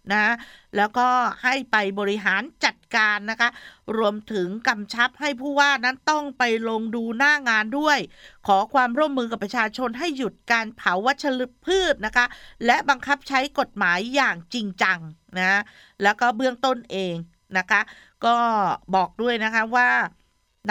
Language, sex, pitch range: Thai, female, 190-245 Hz